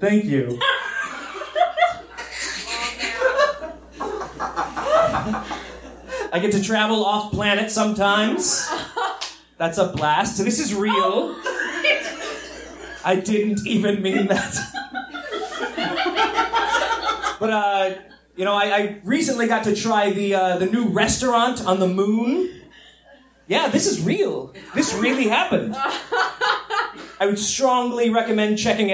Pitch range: 190-280 Hz